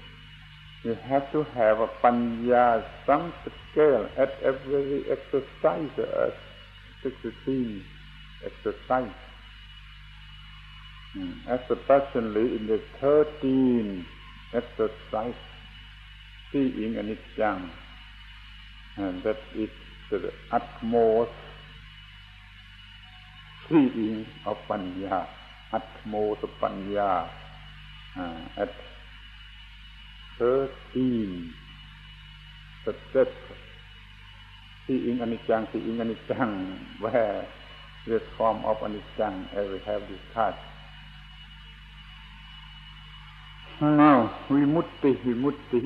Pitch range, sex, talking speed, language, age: 105-135 Hz, male, 75 wpm, English, 60-79